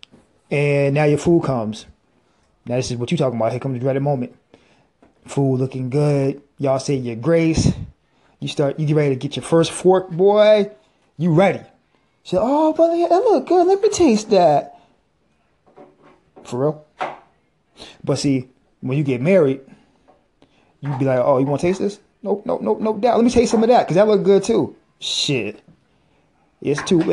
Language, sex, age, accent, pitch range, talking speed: English, male, 20-39, American, 135-175 Hz, 185 wpm